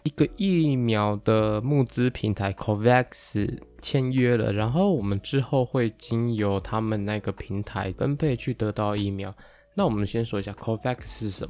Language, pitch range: Chinese, 105-125 Hz